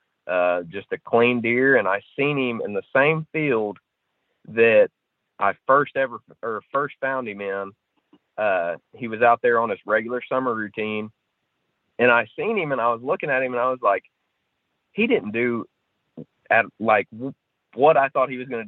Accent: American